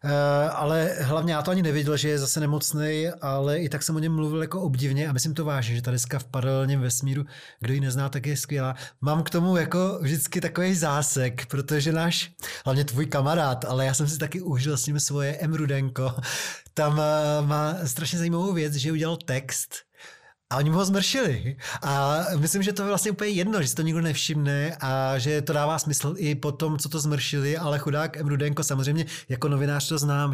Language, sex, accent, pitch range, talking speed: Czech, male, native, 140-165 Hz, 200 wpm